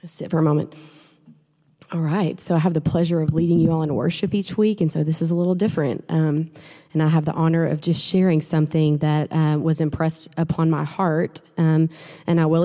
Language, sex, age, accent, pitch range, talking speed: English, female, 20-39, American, 160-175 Hz, 225 wpm